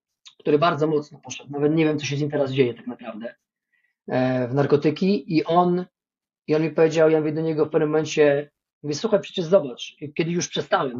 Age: 40-59